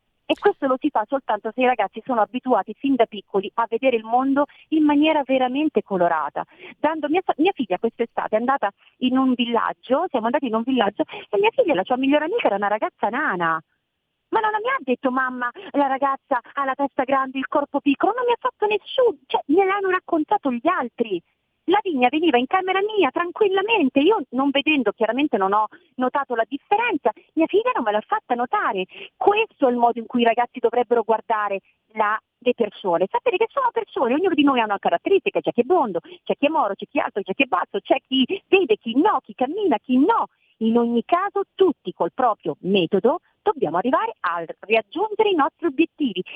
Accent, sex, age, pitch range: native, female, 40-59, 220-345 Hz